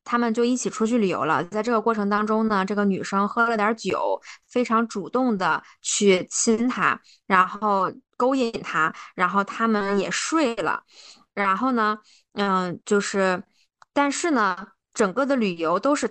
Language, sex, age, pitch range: Chinese, female, 20-39, 200-255 Hz